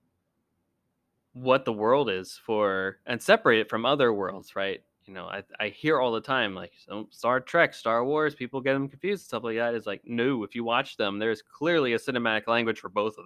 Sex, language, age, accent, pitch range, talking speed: male, English, 20-39, American, 110-135 Hz, 215 wpm